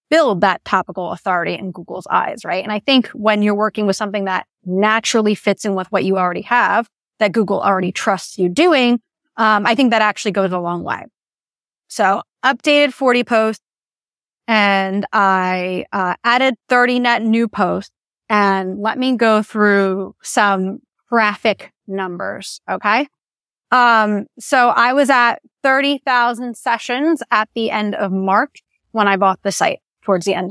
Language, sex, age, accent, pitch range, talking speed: English, female, 30-49, American, 195-245 Hz, 160 wpm